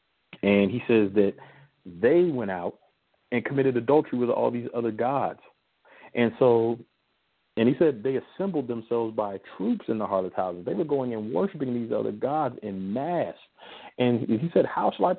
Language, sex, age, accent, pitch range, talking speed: English, male, 40-59, American, 115-155 Hz, 180 wpm